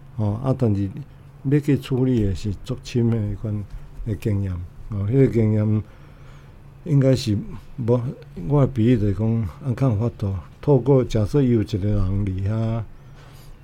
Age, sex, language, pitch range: 60-79, male, Chinese, 100-125 Hz